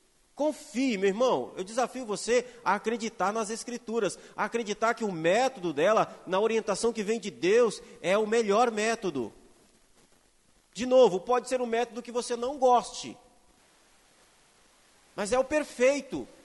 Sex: male